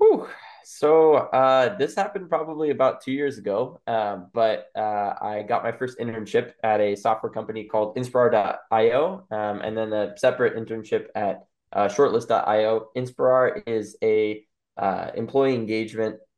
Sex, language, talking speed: male, English, 145 wpm